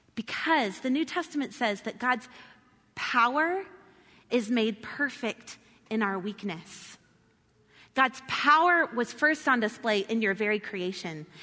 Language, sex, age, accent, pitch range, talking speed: English, female, 30-49, American, 225-310 Hz, 125 wpm